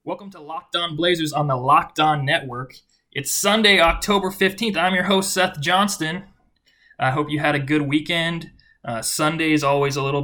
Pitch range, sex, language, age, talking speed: 130-170 Hz, male, English, 20-39, 180 wpm